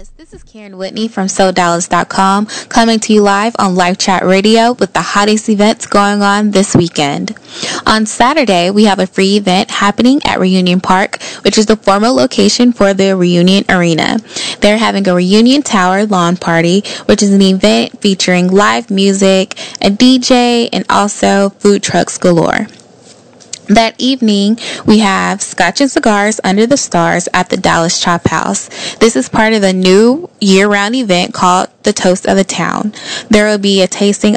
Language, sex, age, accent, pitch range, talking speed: English, female, 10-29, American, 185-220 Hz, 170 wpm